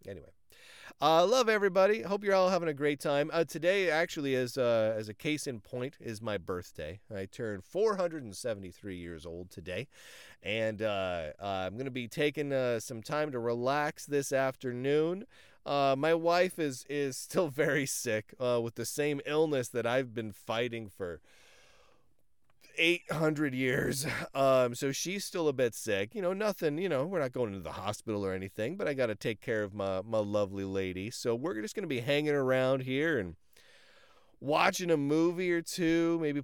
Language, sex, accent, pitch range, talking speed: English, male, American, 110-165 Hz, 185 wpm